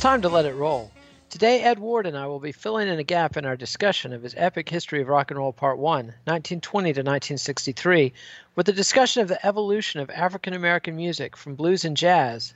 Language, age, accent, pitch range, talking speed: English, 40-59, American, 135-190 Hz, 220 wpm